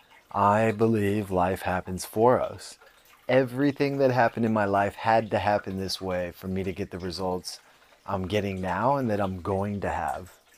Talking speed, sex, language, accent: 180 wpm, male, English, American